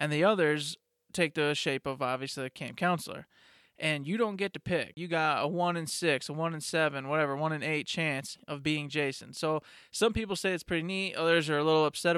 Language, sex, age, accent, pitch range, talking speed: English, male, 20-39, American, 145-165 Hz, 230 wpm